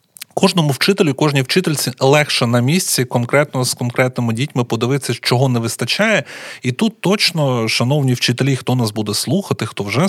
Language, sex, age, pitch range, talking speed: Ukrainian, male, 30-49, 120-145 Hz, 155 wpm